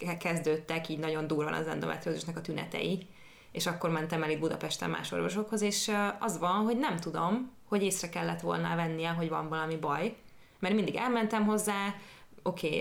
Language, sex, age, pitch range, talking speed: Hungarian, female, 20-39, 155-185 Hz, 170 wpm